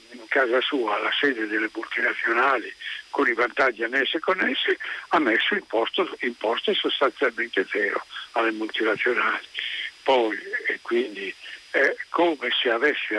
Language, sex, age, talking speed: Italian, male, 60-79, 125 wpm